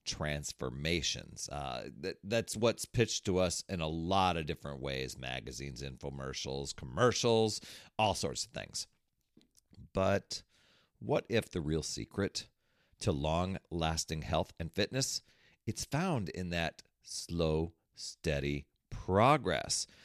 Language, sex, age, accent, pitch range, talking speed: English, male, 40-59, American, 80-115 Hz, 115 wpm